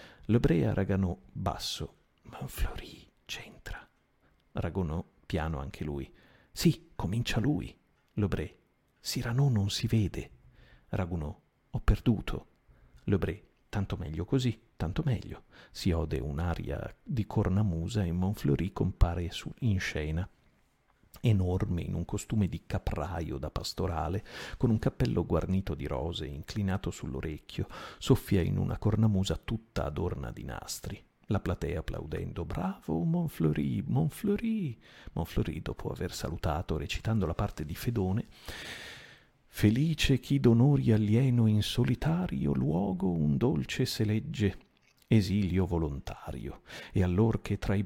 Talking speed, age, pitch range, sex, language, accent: 120 wpm, 50-69, 85-115 Hz, male, Italian, native